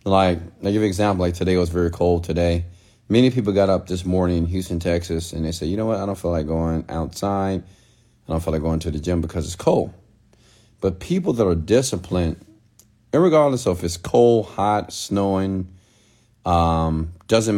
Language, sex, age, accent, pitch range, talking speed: English, male, 40-59, American, 85-110 Hz, 200 wpm